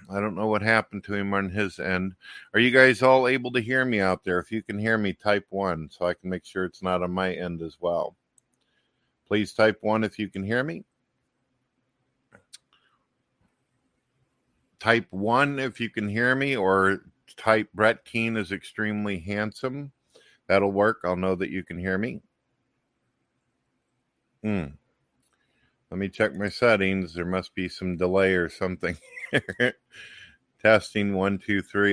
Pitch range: 90-115 Hz